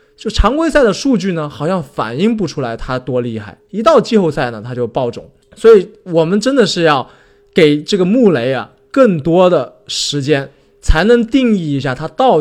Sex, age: male, 20-39